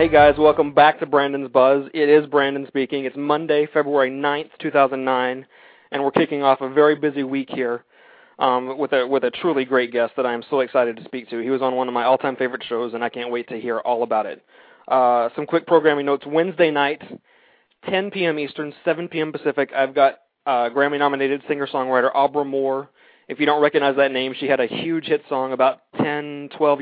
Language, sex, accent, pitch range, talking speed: English, male, American, 130-150 Hz, 210 wpm